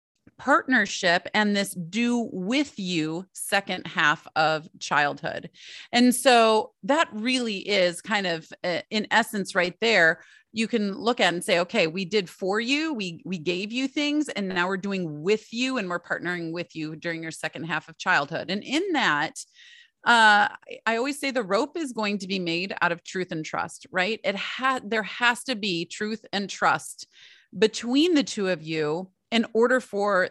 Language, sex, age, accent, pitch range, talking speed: English, female, 30-49, American, 185-245 Hz, 180 wpm